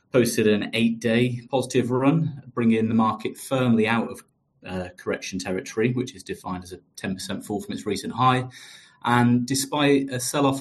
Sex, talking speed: male, 165 wpm